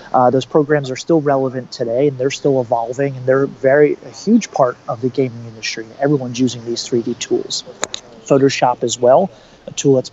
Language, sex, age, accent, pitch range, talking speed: English, male, 30-49, American, 120-140 Hz, 190 wpm